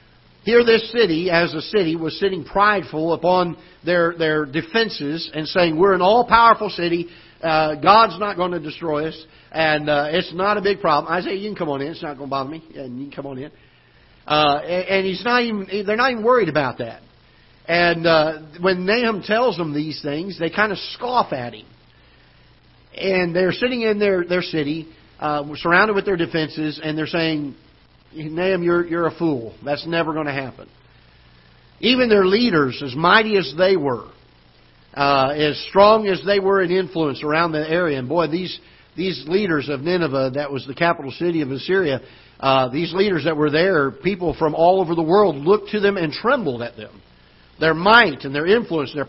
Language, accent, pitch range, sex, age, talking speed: English, American, 145-190 Hz, male, 50-69, 200 wpm